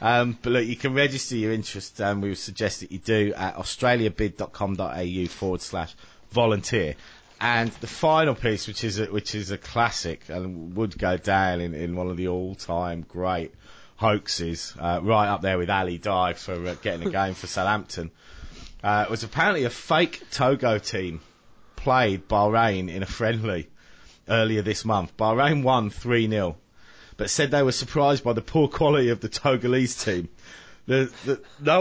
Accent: British